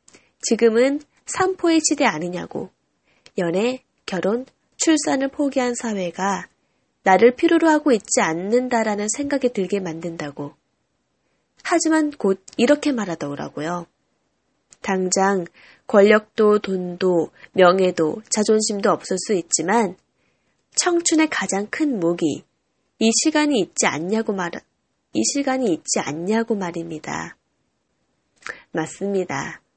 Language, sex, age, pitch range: Korean, female, 20-39, 185-280 Hz